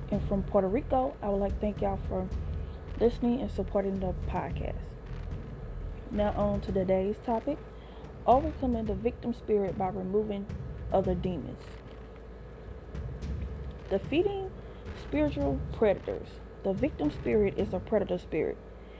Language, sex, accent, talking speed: English, female, American, 125 wpm